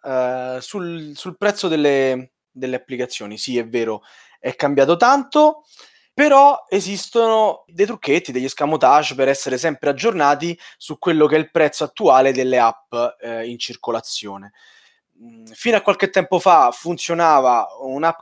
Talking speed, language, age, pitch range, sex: 130 wpm, Italian, 20-39, 125-170 Hz, male